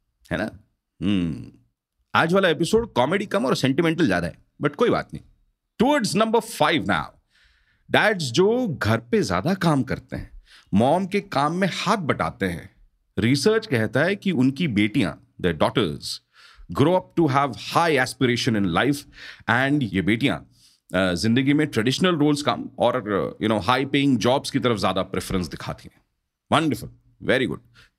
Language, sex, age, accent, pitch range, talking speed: Hindi, male, 40-59, native, 115-180 Hz, 140 wpm